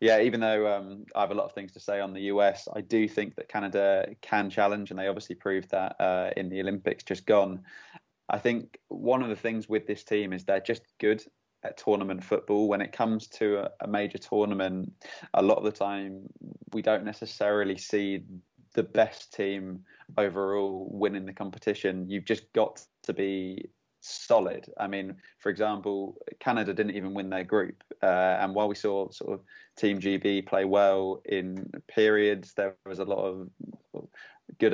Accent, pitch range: British, 95-105 Hz